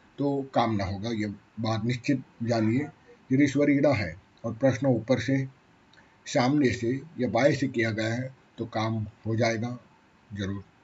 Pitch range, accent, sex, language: 110-135 Hz, native, male, Hindi